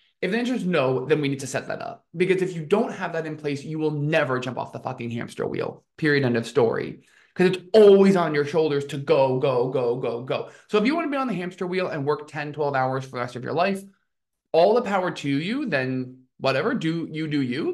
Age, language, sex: 20-39, English, male